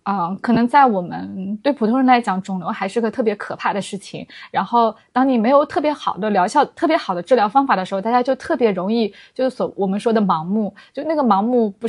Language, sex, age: Chinese, female, 20-39